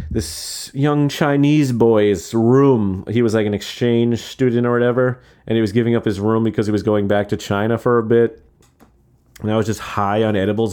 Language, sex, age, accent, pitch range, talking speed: English, male, 30-49, American, 100-125 Hz, 205 wpm